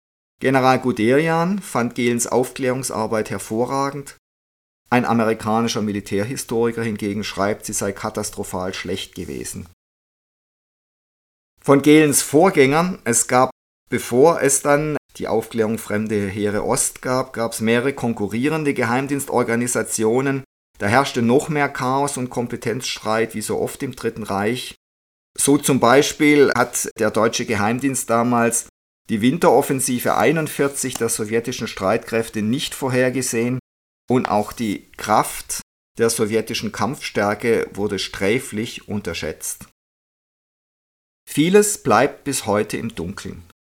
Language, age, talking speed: German, 50-69, 110 wpm